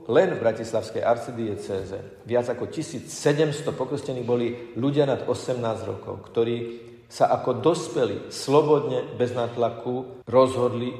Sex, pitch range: male, 110-135 Hz